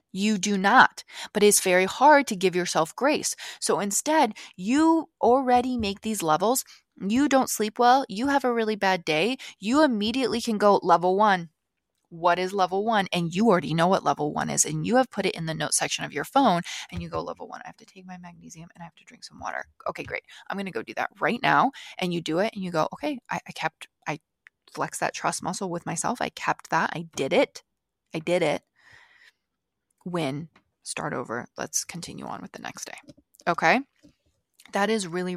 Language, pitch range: English, 175-235 Hz